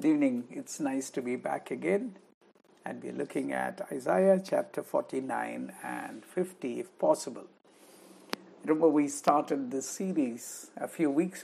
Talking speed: 140 wpm